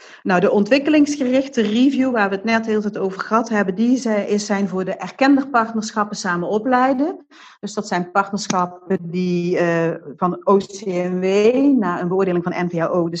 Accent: Dutch